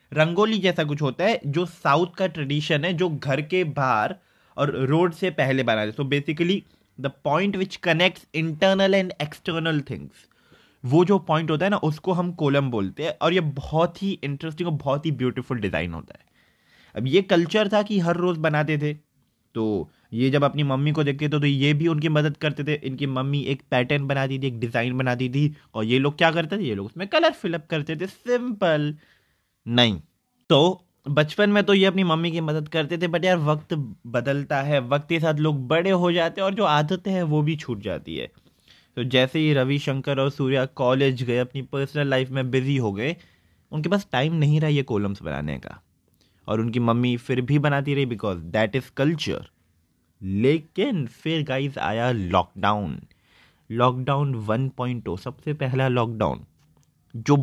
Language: Hindi